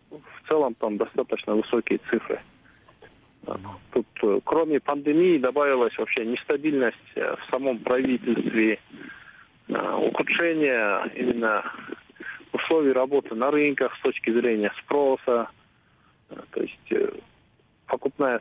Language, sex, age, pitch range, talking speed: Russian, male, 40-59, 125-170 Hz, 90 wpm